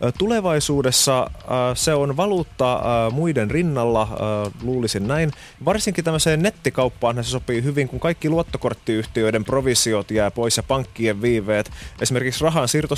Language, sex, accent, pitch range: Finnish, male, native, 110-135 Hz